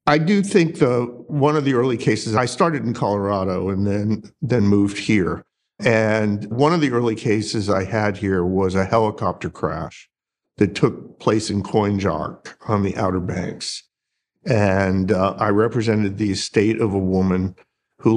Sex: male